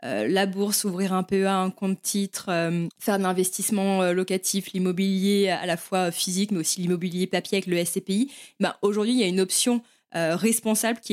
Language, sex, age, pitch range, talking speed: French, female, 20-39, 190-245 Hz, 190 wpm